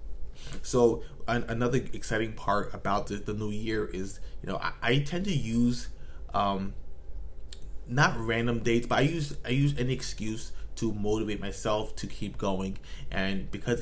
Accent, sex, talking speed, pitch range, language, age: American, male, 160 wpm, 95-110 Hz, English, 20-39